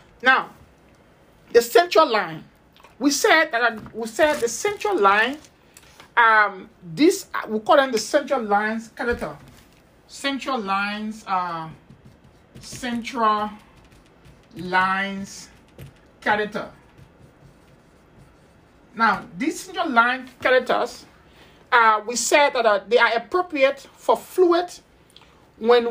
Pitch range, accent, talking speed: 210-275 Hz, Nigerian, 105 wpm